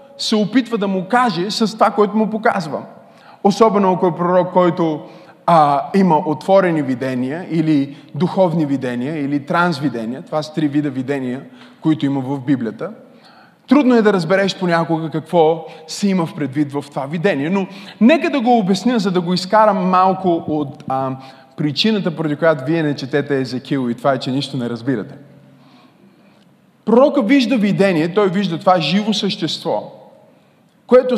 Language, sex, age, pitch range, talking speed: Bulgarian, male, 20-39, 140-210 Hz, 155 wpm